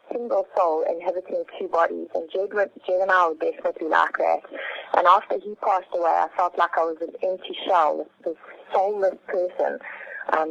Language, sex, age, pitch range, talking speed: English, female, 30-49, 175-295 Hz, 175 wpm